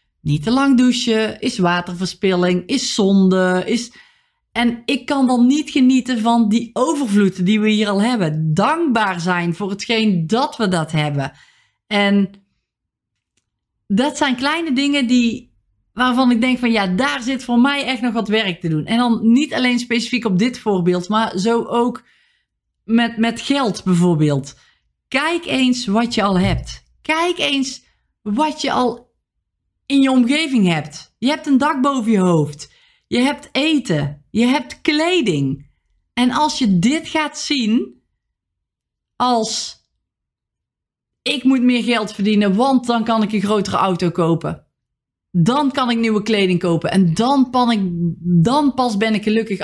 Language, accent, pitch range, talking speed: Dutch, Dutch, 190-260 Hz, 155 wpm